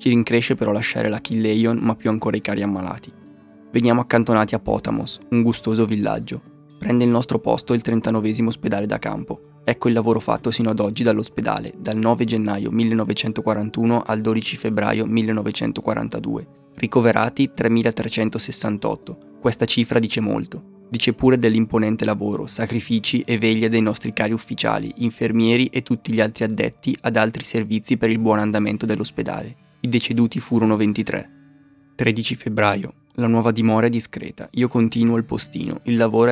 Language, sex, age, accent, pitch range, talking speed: Italian, male, 20-39, native, 110-120 Hz, 150 wpm